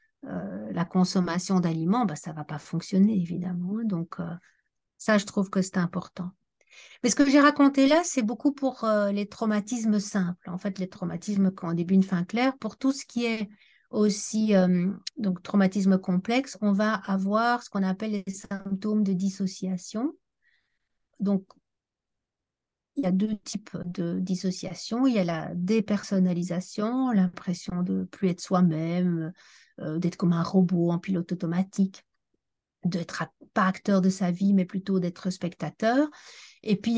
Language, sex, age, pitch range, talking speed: French, female, 50-69, 180-215 Hz, 160 wpm